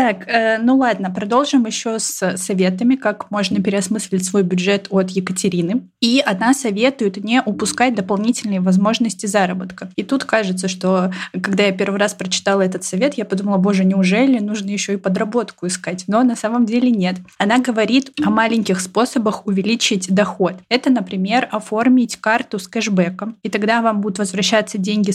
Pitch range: 190-225 Hz